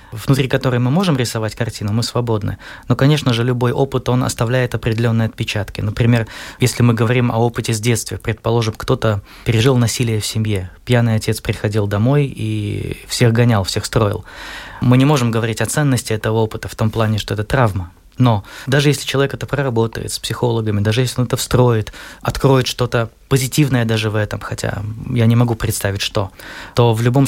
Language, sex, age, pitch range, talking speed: Russian, male, 20-39, 110-130 Hz, 180 wpm